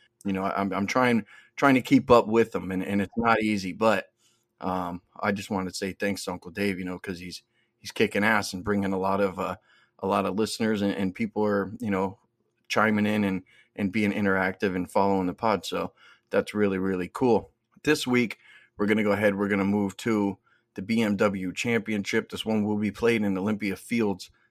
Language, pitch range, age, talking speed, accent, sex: English, 95-110 Hz, 30-49, 215 wpm, American, male